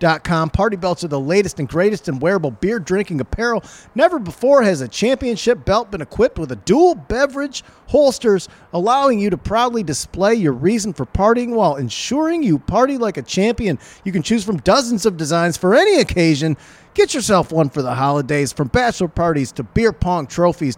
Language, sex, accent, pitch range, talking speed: English, male, American, 155-230 Hz, 190 wpm